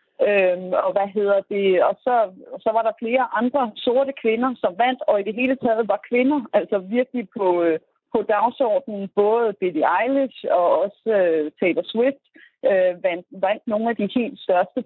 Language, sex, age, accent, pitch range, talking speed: Danish, female, 30-49, native, 205-270 Hz, 155 wpm